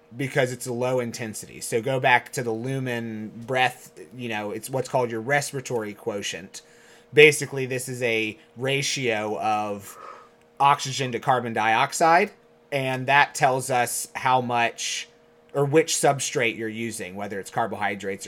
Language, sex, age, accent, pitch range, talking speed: English, male, 30-49, American, 110-140 Hz, 145 wpm